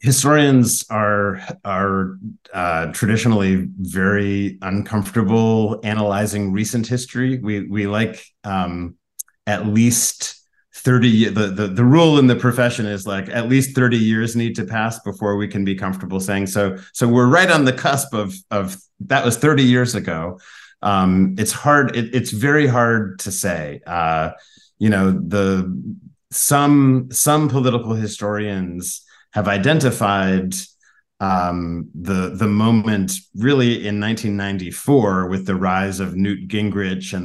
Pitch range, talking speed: 95-115 Hz, 140 wpm